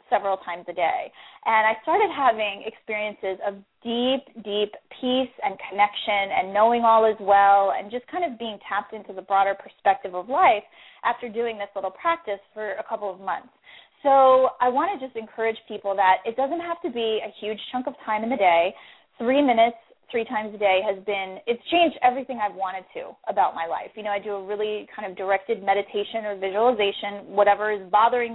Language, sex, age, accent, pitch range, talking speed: English, female, 20-39, American, 200-250 Hz, 200 wpm